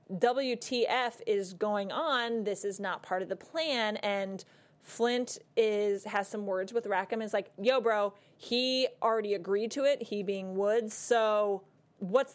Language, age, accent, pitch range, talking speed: English, 20-39, American, 190-220 Hz, 160 wpm